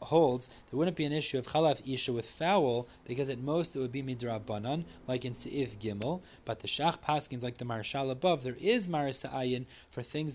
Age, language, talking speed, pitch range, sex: 30-49, English, 215 wpm, 120-160 Hz, male